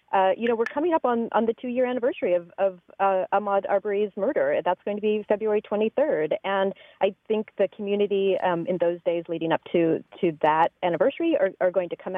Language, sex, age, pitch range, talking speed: English, female, 30-49, 175-215 Hz, 215 wpm